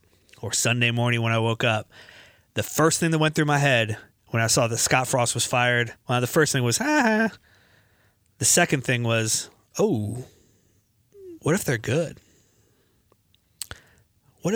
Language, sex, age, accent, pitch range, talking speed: English, male, 30-49, American, 105-145 Hz, 155 wpm